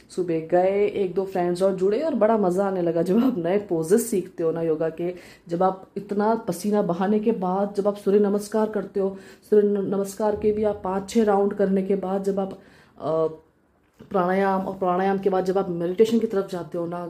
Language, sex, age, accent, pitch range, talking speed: Hindi, female, 20-39, native, 185-230 Hz, 210 wpm